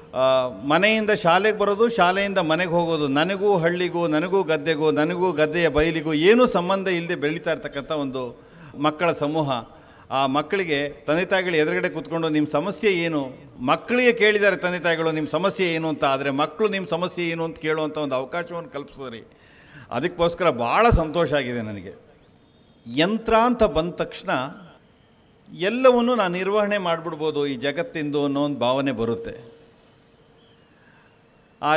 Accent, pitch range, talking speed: native, 150-190 Hz, 130 wpm